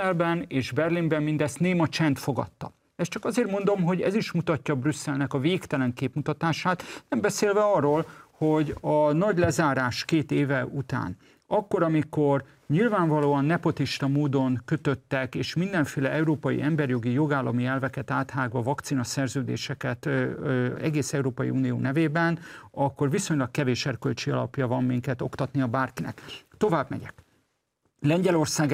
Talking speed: 125 wpm